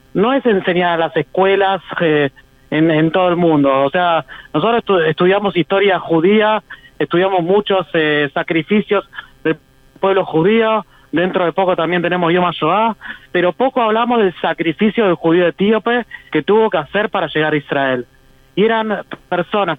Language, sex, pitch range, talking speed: Spanish, male, 160-200 Hz, 155 wpm